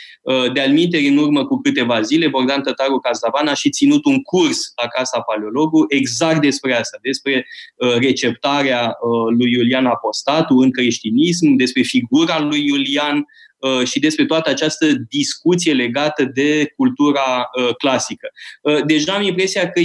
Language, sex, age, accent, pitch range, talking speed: Romanian, male, 20-39, native, 130-160 Hz, 135 wpm